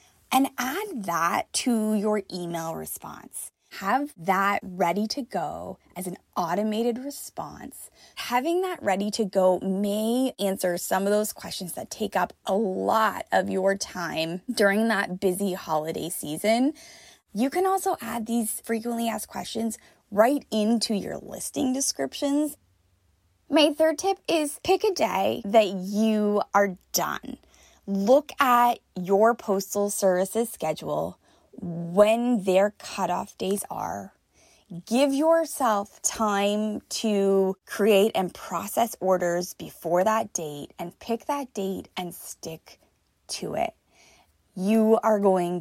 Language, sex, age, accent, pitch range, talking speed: English, female, 20-39, American, 190-245 Hz, 130 wpm